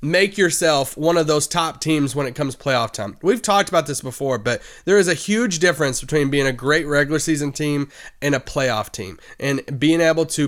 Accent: American